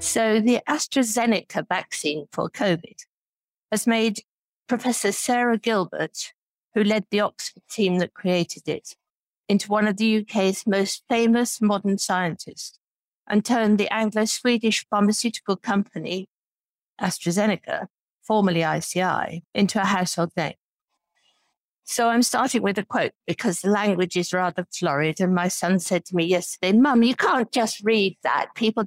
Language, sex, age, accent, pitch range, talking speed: English, female, 50-69, British, 185-225 Hz, 140 wpm